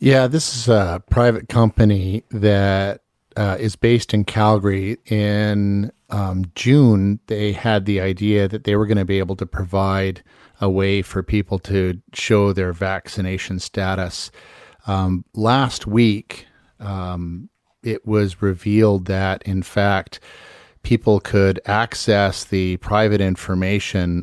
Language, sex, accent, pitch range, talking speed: English, male, American, 95-105 Hz, 130 wpm